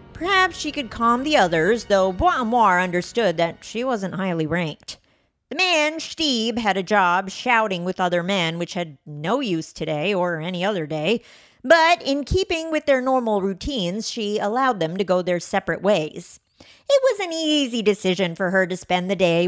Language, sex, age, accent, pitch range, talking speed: English, female, 40-59, American, 180-275 Hz, 180 wpm